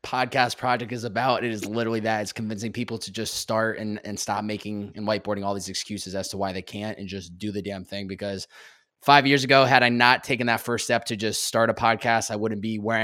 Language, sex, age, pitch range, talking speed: English, male, 20-39, 110-125 Hz, 250 wpm